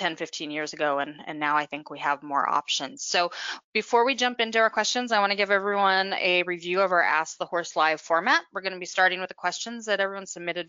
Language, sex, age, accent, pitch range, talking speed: English, female, 20-39, American, 165-215 Hz, 255 wpm